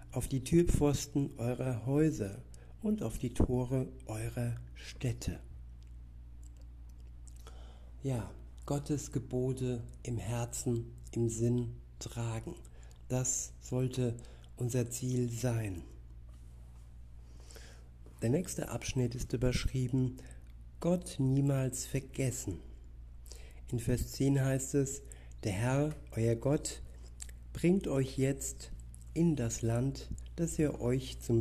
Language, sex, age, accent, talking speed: German, male, 60-79, German, 95 wpm